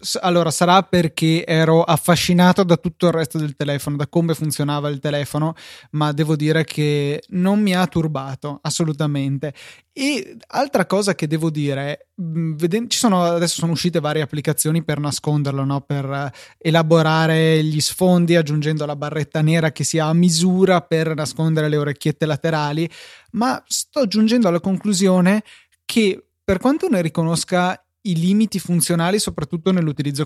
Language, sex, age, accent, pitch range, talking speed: Italian, male, 20-39, native, 150-190 Hz, 145 wpm